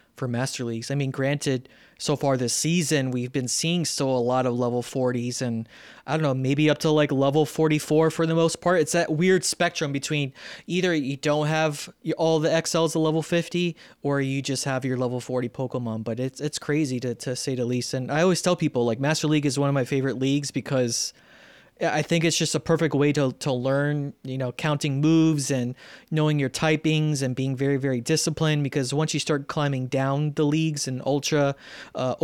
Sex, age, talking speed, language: male, 20-39, 210 wpm, English